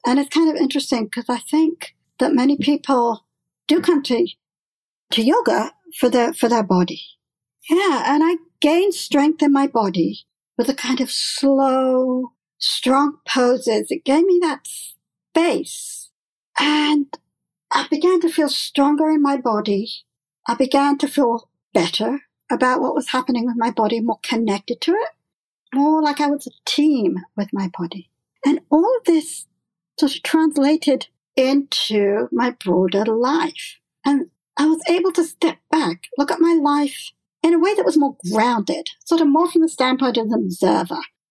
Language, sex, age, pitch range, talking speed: English, male, 60-79, 245-315 Hz, 165 wpm